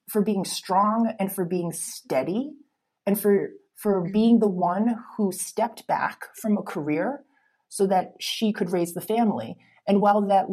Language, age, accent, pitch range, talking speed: English, 30-49, American, 170-215 Hz, 165 wpm